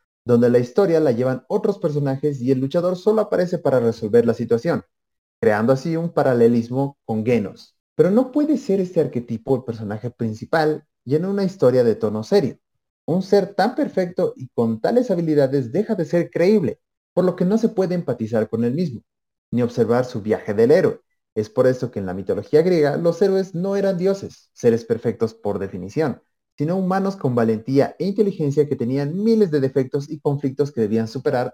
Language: Spanish